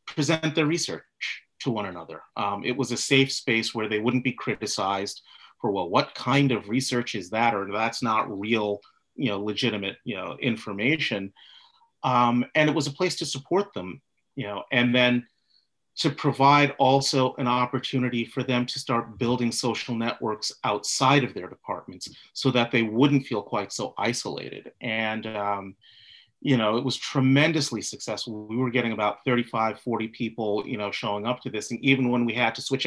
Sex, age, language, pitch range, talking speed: male, 30-49, English, 115-135 Hz, 185 wpm